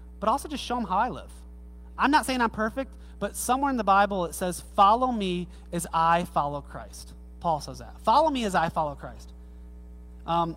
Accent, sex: American, male